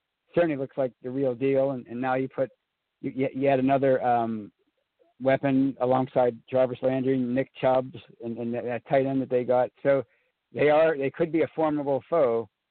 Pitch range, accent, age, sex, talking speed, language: 125-145 Hz, American, 50-69, male, 190 wpm, English